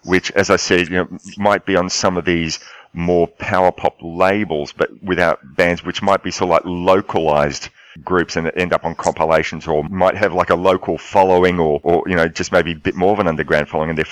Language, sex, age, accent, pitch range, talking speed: English, male, 40-59, Australian, 85-105 Hz, 230 wpm